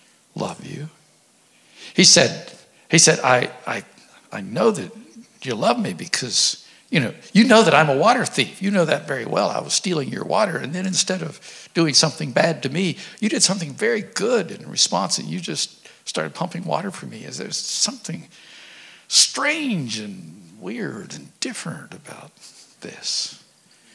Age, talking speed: 60-79, 170 wpm